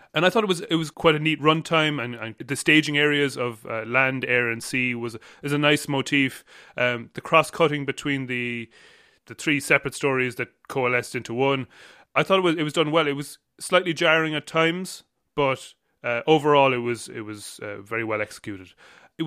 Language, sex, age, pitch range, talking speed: English, male, 30-49, 120-155 Hz, 210 wpm